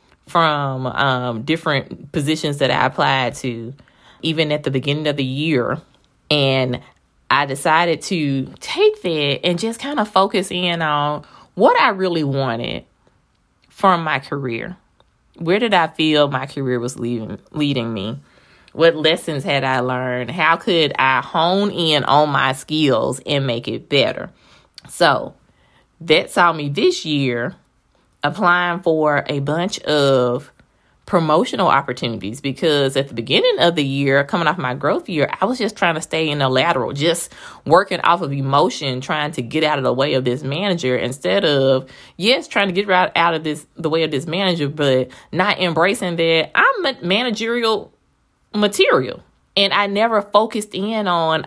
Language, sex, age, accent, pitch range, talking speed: English, female, 20-39, American, 135-175 Hz, 165 wpm